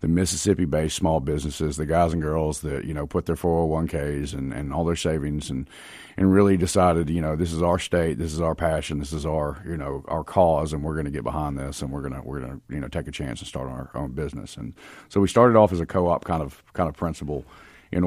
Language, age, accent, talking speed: English, 40-59, American, 270 wpm